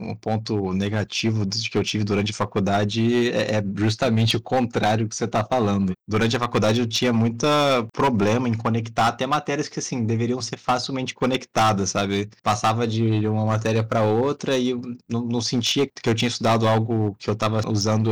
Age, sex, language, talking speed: 20-39, male, Portuguese, 180 wpm